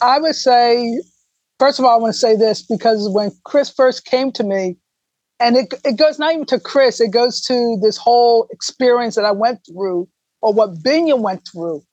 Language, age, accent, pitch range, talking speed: English, 50-69, American, 195-250 Hz, 205 wpm